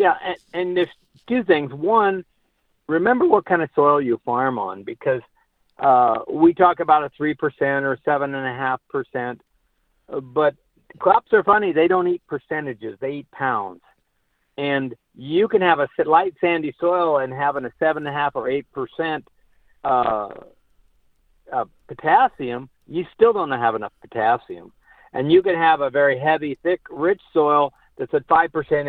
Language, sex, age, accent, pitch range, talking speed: English, male, 50-69, American, 135-180 Hz, 145 wpm